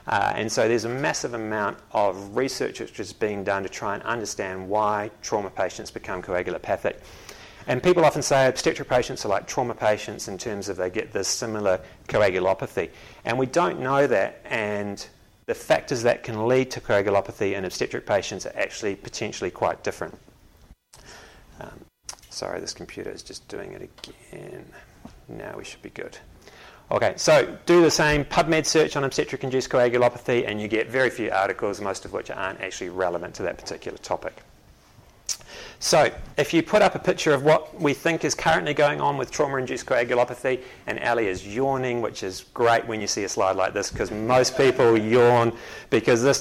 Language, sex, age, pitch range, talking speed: English, male, 30-49, 105-140 Hz, 180 wpm